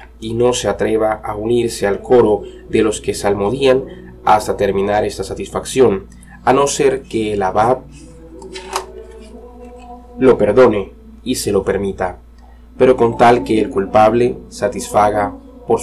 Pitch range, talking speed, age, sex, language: 105-130 Hz, 135 wpm, 20-39, male, Spanish